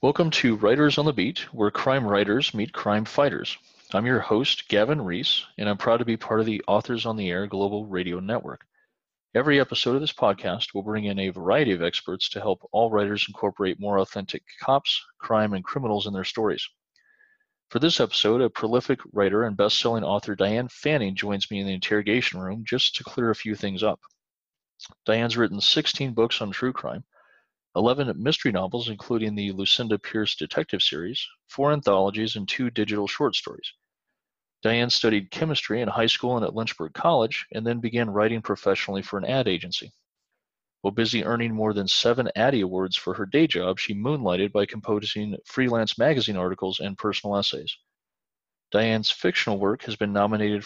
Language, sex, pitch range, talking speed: English, male, 100-120 Hz, 180 wpm